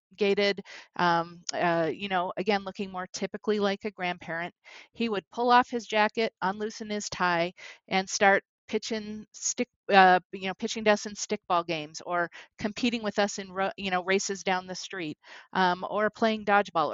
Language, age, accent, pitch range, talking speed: English, 40-59, American, 170-210 Hz, 175 wpm